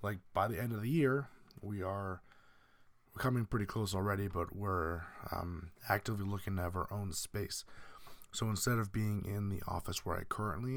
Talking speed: 185 wpm